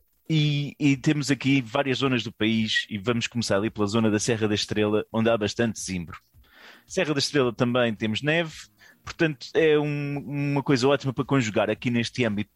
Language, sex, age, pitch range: Portuguese, male, 20-39, 110-145 Hz